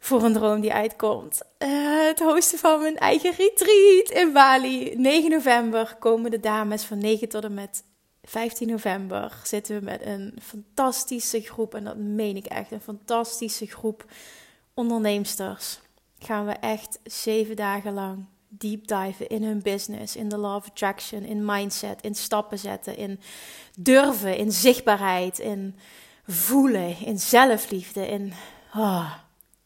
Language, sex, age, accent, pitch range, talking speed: Dutch, female, 30-49, Dutch, 205-245 Hz, 145 wpm